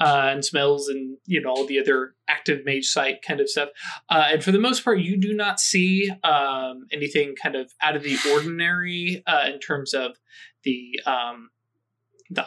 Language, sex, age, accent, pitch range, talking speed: English, male, 20-39, American, 130-165 Hz, 190 wpm